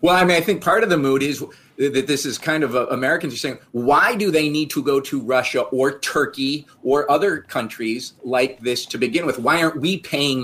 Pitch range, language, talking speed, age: 105-150 Hz, English, 235 wpm, 40-59